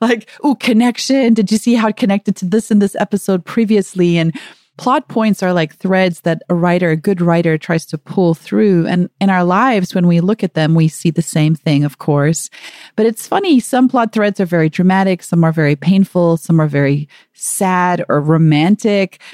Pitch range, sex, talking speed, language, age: 165-215 Hz, female, 205 wpm, English, 30-49